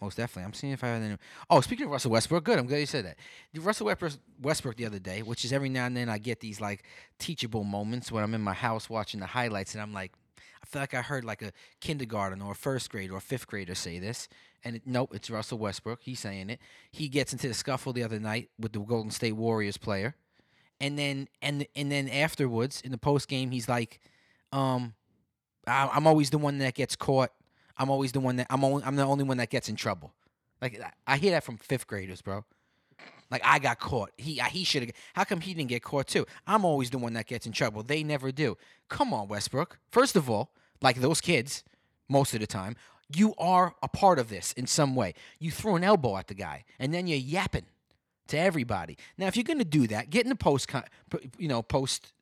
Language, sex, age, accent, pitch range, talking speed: English, male, 20-39, American, 110-145 Hz, 240 wpm